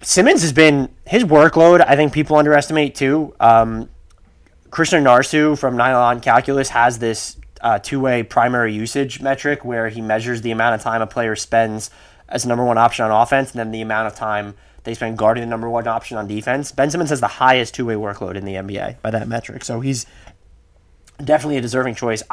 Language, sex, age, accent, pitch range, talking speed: English, male, 20-39, American, 115-145 Hz, 195 wpm